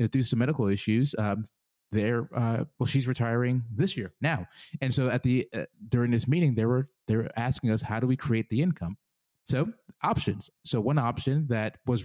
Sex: male